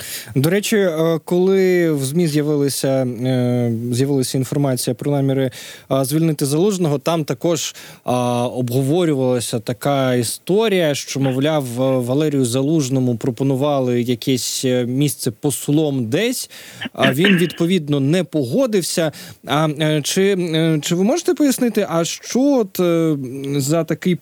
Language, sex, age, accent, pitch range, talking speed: Ukrainian, male, 20-39, native, 130-165 Hz, 100 wpm